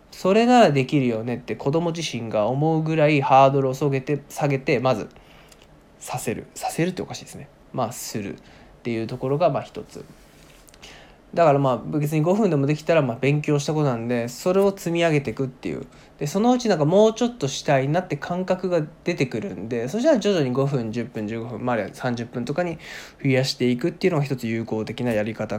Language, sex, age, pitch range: Japanese, male, 20-39, 125-160 Hz